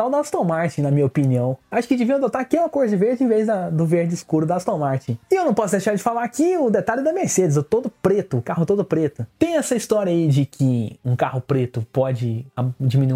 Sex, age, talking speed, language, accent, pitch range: male, 20-39, 240 wpm, Portuguese, Brazilian, 135-220 Hz